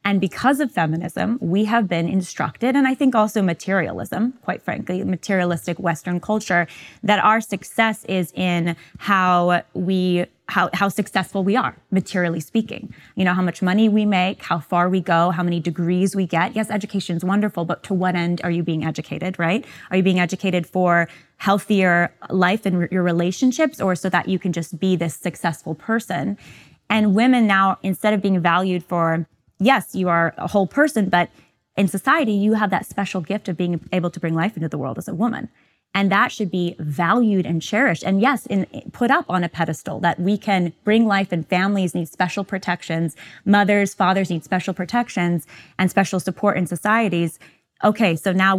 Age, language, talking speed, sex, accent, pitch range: 20-39, English, 190 wpm, female, American, 175-200 Hz